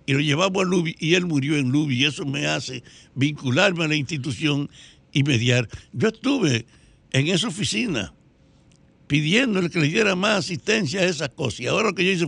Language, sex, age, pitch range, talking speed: Spanish, male, 60-79, 155-200 Hz, 195 wpm